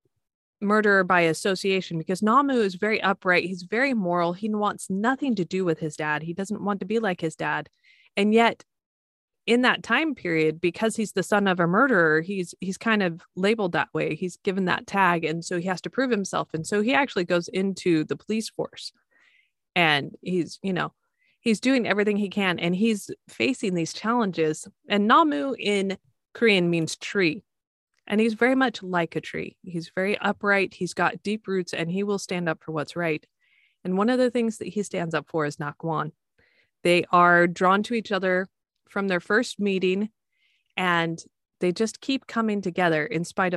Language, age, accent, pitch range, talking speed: English, 20-39, American, 175-225 Hz, 190 wpm